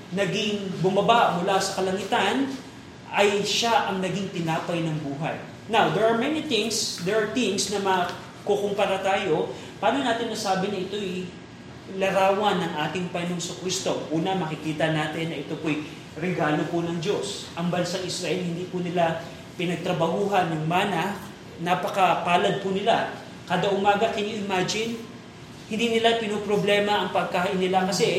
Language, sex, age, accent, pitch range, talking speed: Filipino, male, 20-39, native, 175-205 Hz, 145 wpm